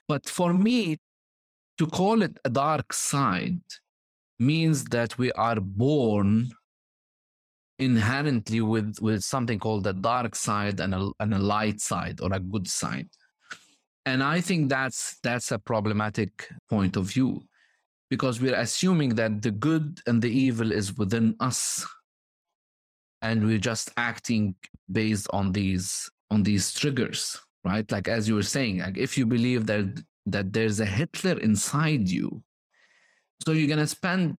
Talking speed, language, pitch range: 150 wpm, English, 105-145 Hz